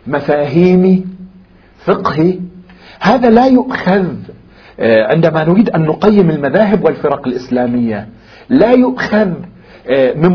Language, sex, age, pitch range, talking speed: Arabic, male, 50-69, 155-220 Hz, 85 wpm